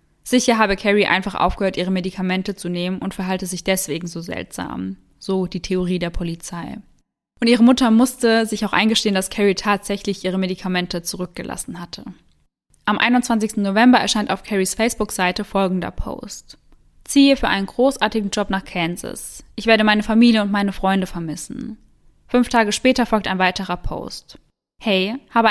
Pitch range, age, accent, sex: 185-225 Hz, 10-29, German, female